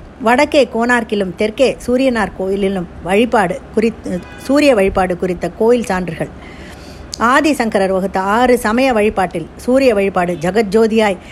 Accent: native